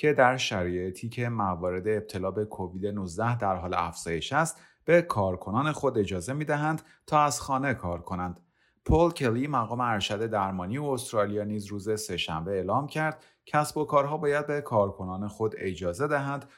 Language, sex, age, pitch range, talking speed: Persian, male, 30-49, 95-135 Hz, 160 wpm